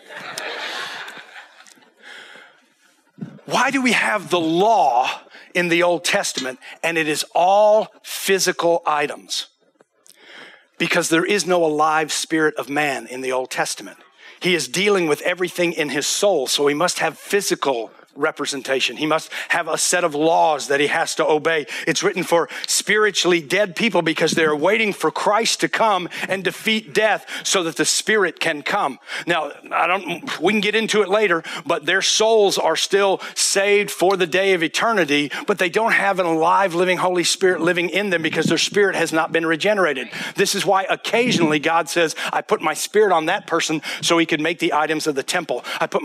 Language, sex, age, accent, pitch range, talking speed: English, male, 50-69, American, 160-195 Hz, 180 wpm